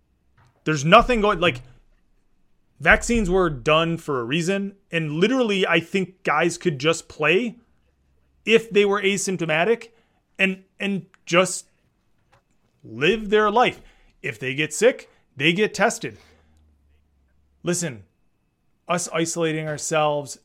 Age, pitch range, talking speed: 30-49, 140-195 Hz, 115 wpm